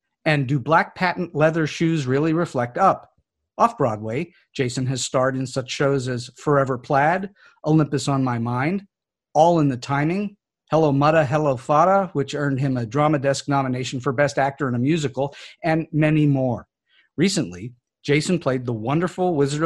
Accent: American